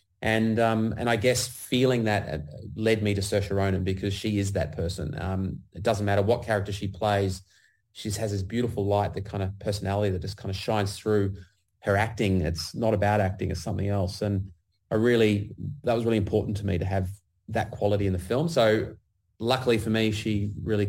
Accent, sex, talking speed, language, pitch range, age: Australian, male, 205 wpm, English, 95-110 Hz, 30-49